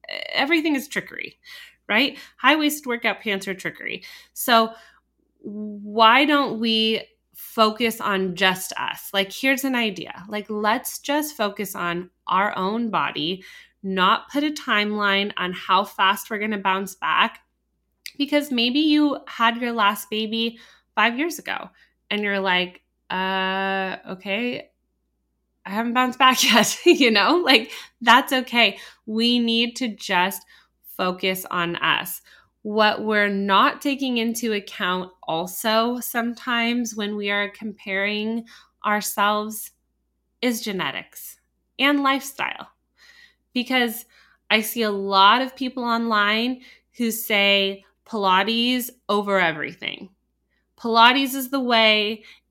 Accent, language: American, English